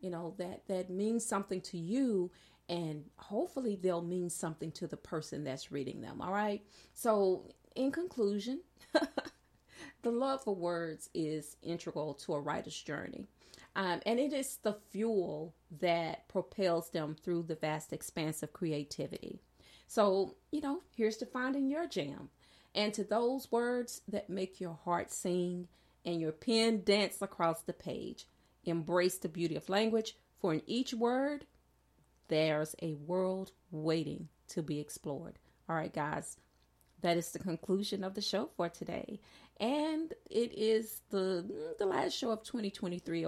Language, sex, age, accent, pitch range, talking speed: English, female, 40-59, American, 165-220 Hz, 150 wpm